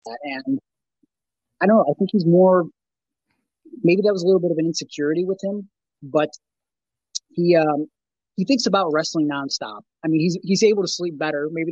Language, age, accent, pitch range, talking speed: English, 30-49, American, 145-165 Hz, 190 wpm